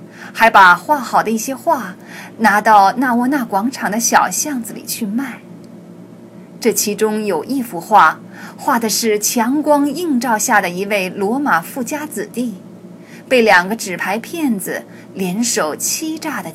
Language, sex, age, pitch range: Chinese, female, 20-39, 195-265 Hz